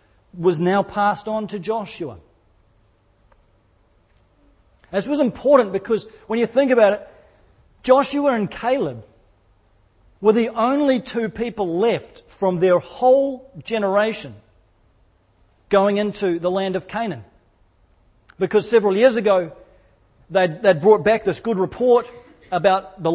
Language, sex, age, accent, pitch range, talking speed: English, male, 40-59, Australian, 165-220 Hz, 120 wpm